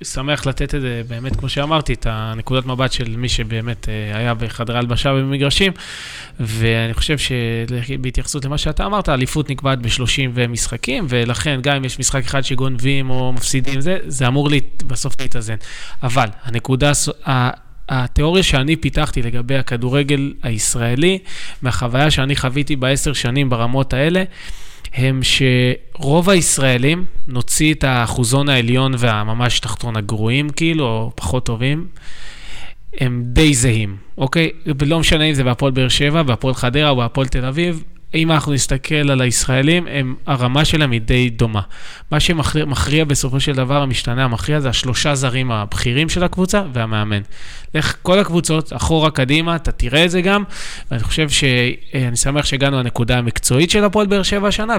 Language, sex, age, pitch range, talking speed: Hebrew, male, 20-39, 120-150 Hz, 150 wpm